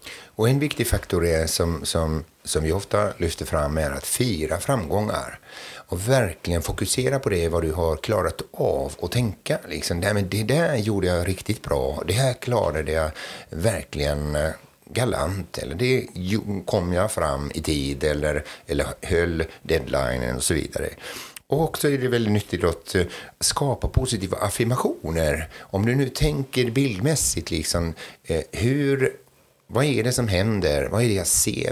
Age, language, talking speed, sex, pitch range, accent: 60-79, Swedish, 160 wpm, male, 80-110 Hz, native